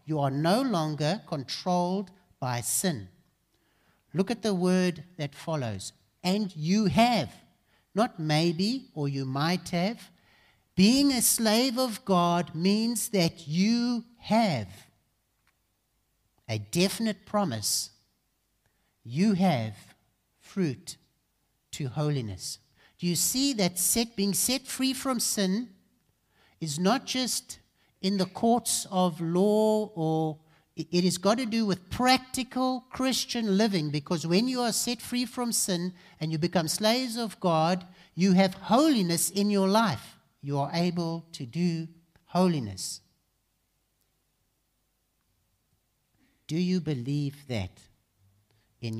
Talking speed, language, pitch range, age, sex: 120 wpm, English, 145-215 Hz, 60-79, male